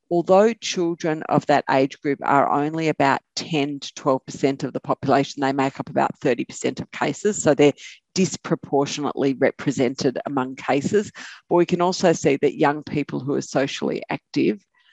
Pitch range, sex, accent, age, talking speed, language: 135-160 Hz, female, Australian, 50-69, 160 wpm, English